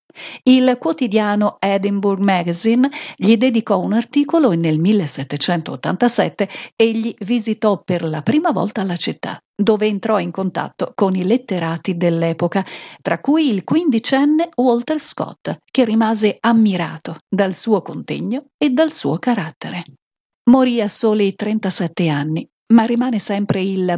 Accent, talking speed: native, 130 wpm